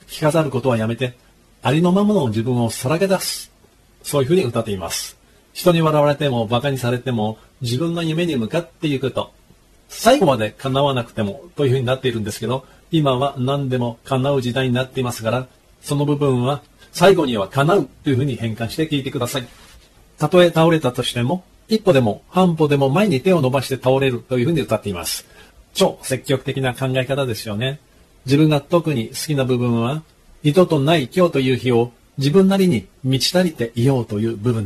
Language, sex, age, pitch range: Japanese, male, 40-59, 120-155 Hz